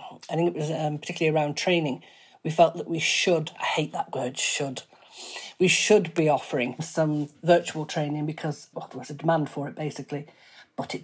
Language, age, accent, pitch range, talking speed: English, 40-59, British, 155-175 Hz, 195 wpm